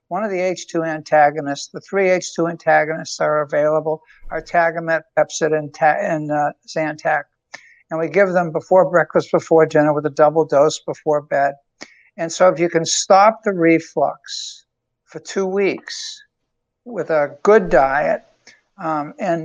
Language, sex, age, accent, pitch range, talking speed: English, male, 60-79, American, 150-185 Hz, 155 wpm